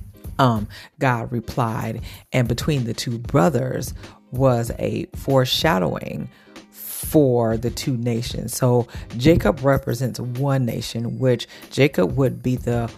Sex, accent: female, American